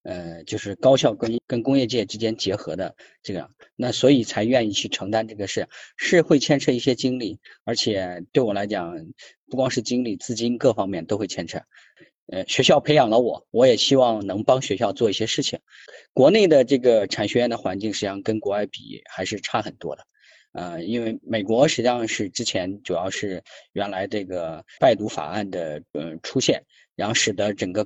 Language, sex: Chinese, male